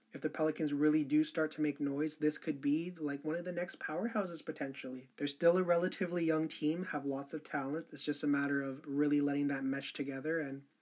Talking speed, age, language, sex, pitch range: 220 wpm, 20-39, English, male, 145-180 Hz